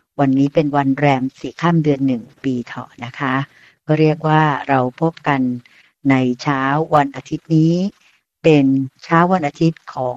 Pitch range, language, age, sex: 130-155 Hz, Thai, 60-79, female